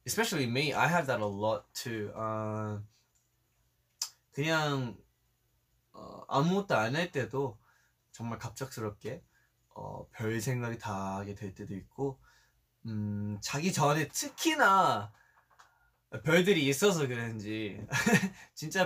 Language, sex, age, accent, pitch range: Korean, male, 20-39, native, 110-155 Hz